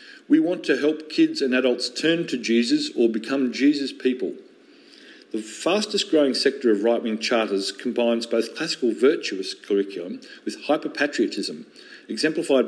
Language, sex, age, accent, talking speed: English, male, 40-59, Australian, 135 wpm